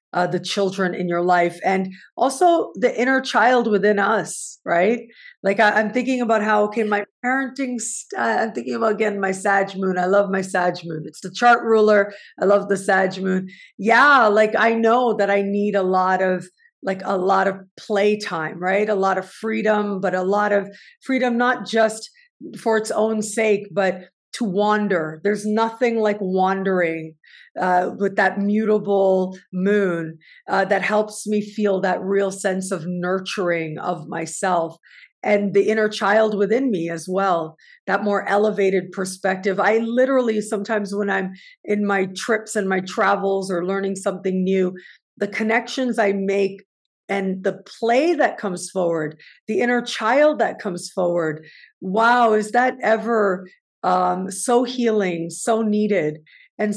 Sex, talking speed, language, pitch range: female, 165 wpm, English, 190-220 Hz